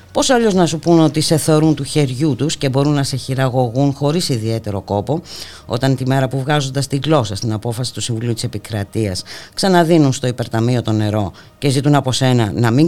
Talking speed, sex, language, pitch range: 200 wpm, female, Greek, 105-140 Hz